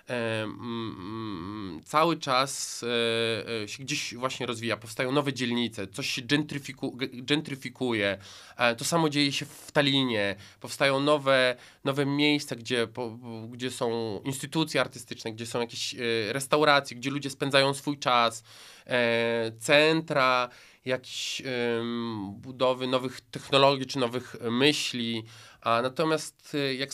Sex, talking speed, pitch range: male, 100 wpm, 115-145 Hz